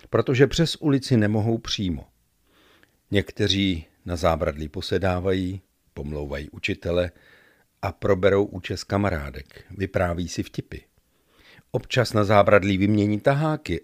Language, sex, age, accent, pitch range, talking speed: Czech, male, 50-69, native, 85-105 Hz, 100 wpm